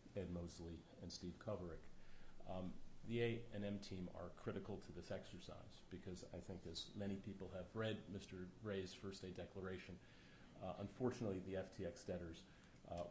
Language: English